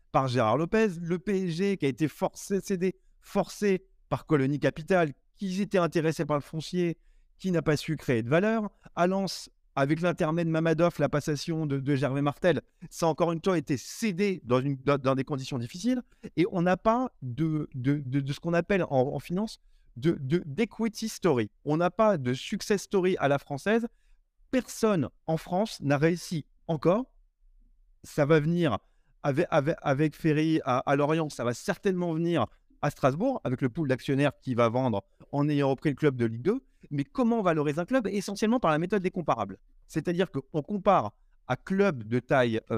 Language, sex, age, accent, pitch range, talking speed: French, male, 30-49, French, 145-195 Hz, 185 wpm